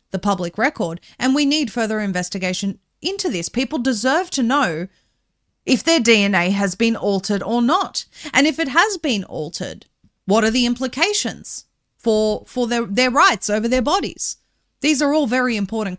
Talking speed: 170 wpm